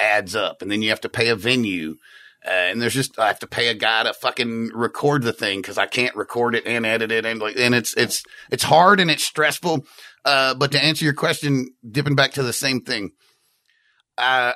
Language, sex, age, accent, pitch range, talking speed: English, male, 30-49, American, 110-140 Hz, 230 wpm